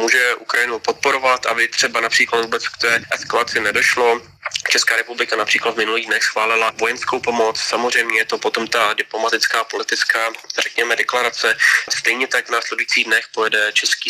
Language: Slovak